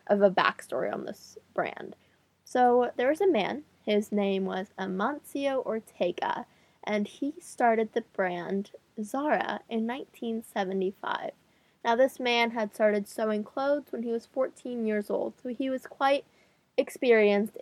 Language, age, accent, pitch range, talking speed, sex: English, 10-29, American, 195-235 Hz, 145 wpm, female